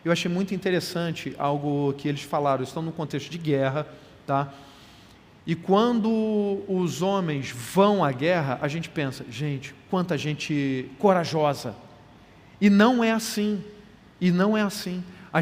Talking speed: 145 wpm